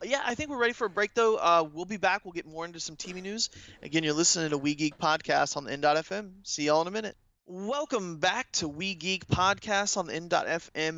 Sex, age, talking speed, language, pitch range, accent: male, 20-39, 245 wpm, English, 150-200 Hz, American